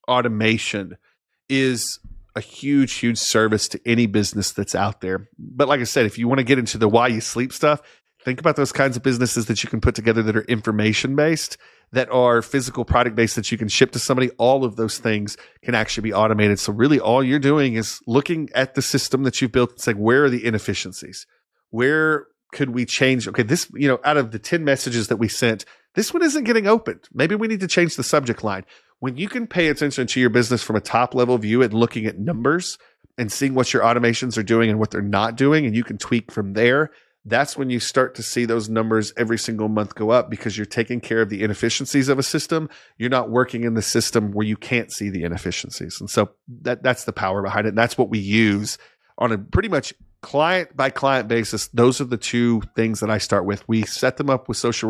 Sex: male